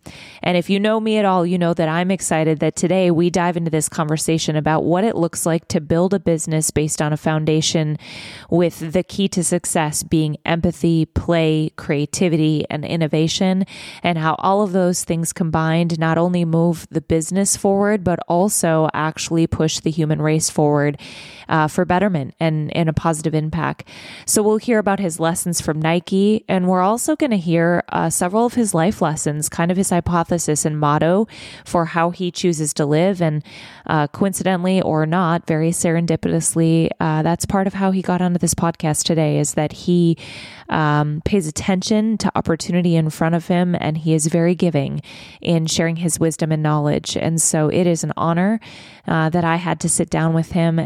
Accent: American